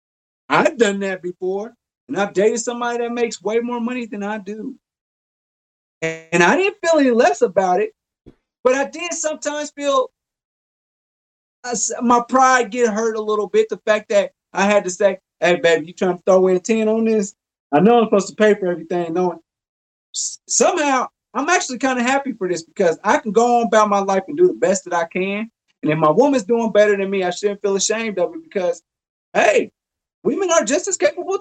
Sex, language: male, English